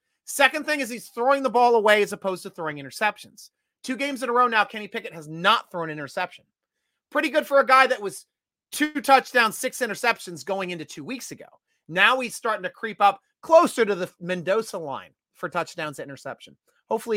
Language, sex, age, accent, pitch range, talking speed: English, male, 30-49, American, 185-265 Hz, 200 wpm